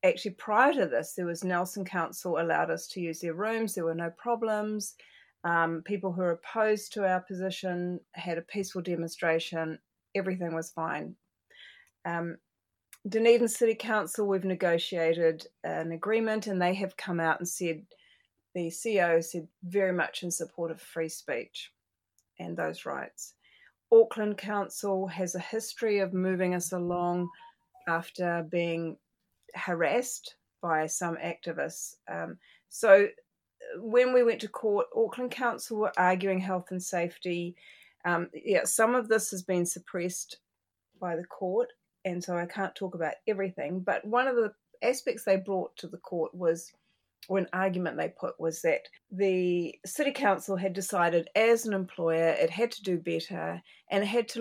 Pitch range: 170-215 Hz